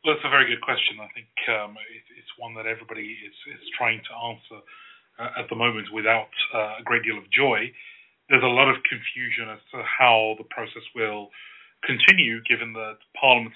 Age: 30-49